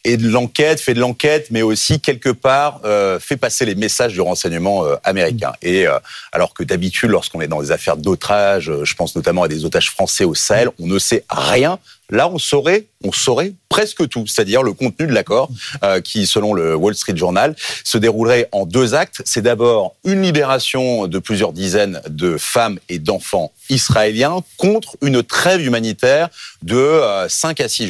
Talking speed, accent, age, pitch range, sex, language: 185 wpm, French, 40-59, 95-140 Hz, male, French